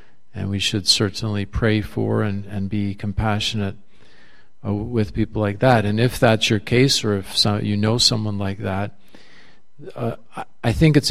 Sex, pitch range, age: male, 105-120 Hz, 50-69